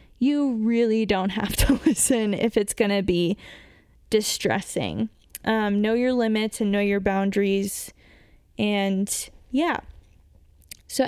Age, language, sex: 10-29, English, female